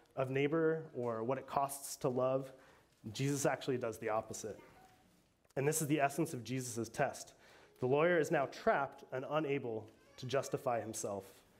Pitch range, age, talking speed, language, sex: 125-155 Hz, 30-49, 160 wpm, English, male